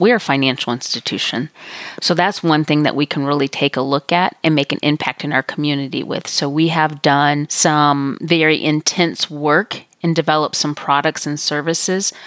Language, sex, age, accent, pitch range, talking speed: English, female, 30-49, American, 145-170 Hz, 185 wpm